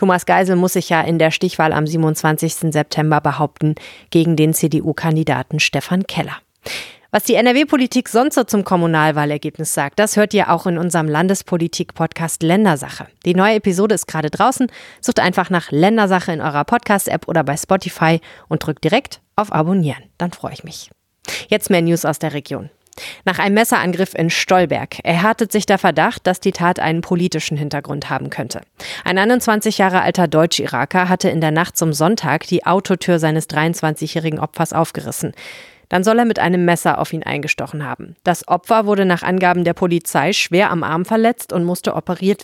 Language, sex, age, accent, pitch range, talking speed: German, female, 30-49, German, 160-195 Hz, 175 wpm